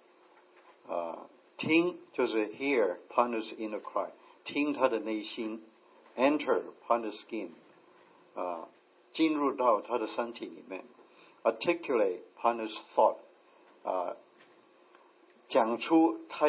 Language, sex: Chinese, male